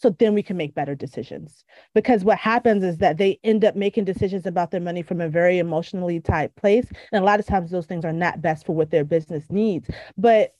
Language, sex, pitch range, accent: English, female, 170-220 Hz, American